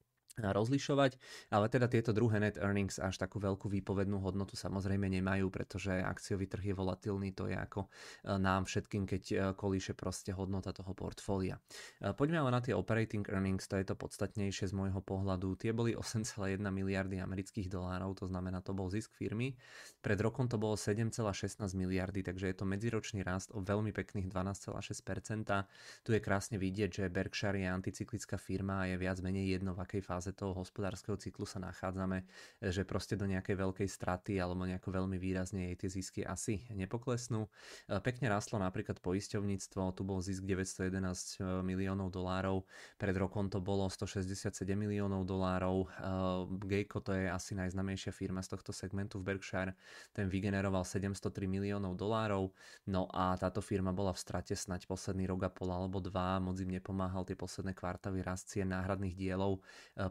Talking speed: 160 wpm